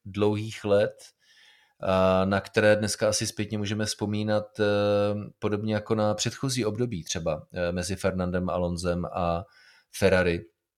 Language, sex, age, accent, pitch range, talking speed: Czech, male, 30-49, native, 90-105 Hz, 110 wpm